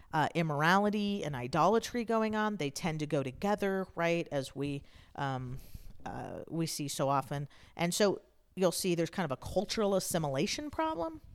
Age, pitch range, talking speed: 40-59, 145-185 Hz, 165 wpm